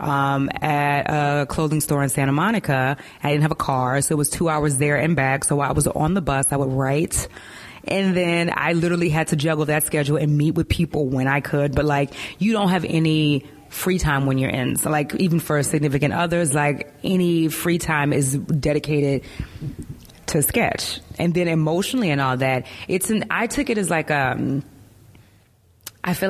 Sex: female